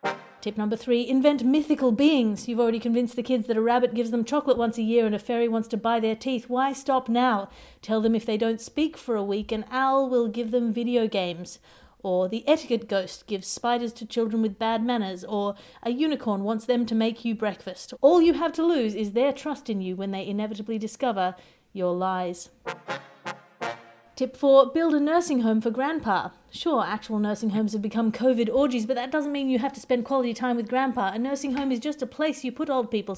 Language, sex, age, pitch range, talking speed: English, female, 40-59, 210-260 Hz, 220 wpm